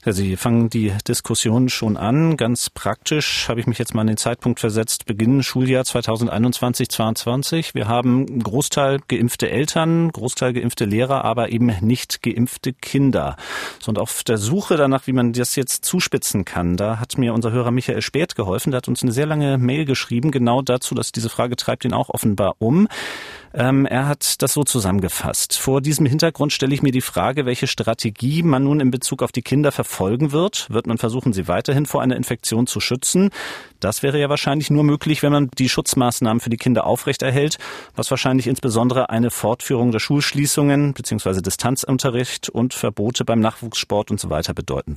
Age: 40-59